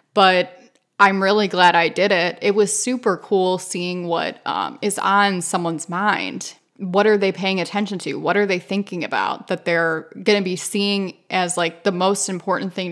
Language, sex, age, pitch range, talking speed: English, female, 20-39, 175-205 Hz, 190 wpm